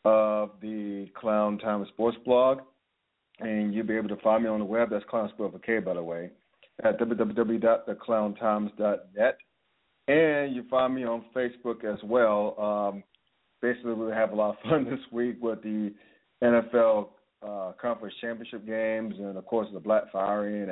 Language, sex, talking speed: English, male, 160 wpm